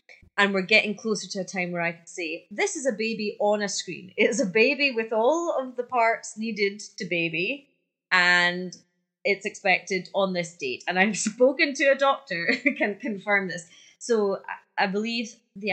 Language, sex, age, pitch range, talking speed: English, female, 20-39, 170-205 Hz, 185 wpm